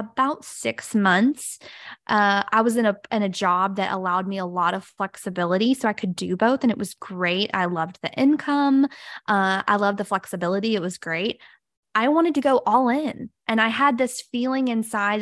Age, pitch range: 20-39, 190-240 Hz